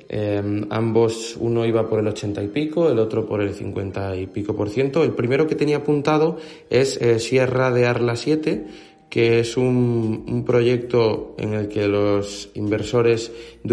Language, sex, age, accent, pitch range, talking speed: Spanish, male, 20-39, Spanish, 100-120 Hz, 175 wpm